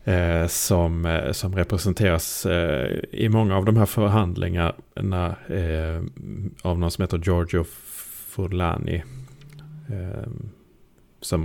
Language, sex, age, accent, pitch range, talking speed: Swedish, male, 30-49, Norwegian, 85-100 Hz, 110 wpm